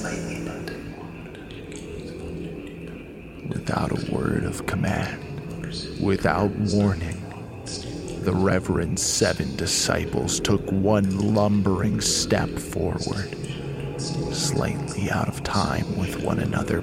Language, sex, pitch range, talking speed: English, male, 100-115 Hz, 80 wpm